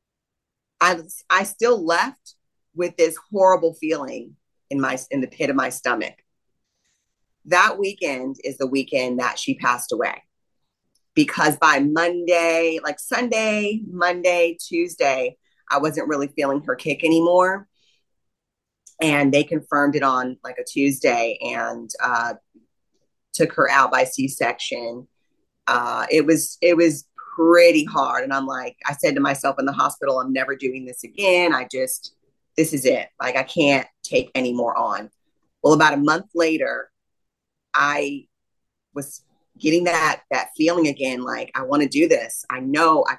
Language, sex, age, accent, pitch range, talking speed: English, female, 30-49, American, 135-175 Hz, 150 wpm